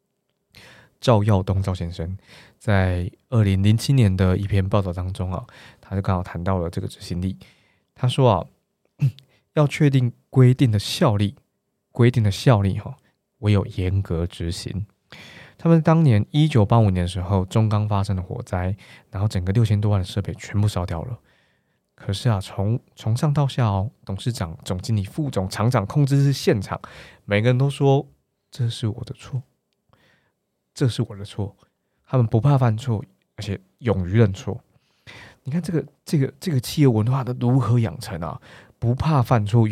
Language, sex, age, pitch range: Chinese, male, 20-39, 95-130 Hz